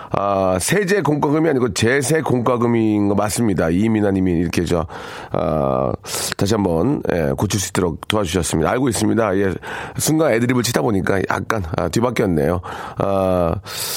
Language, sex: Korean, male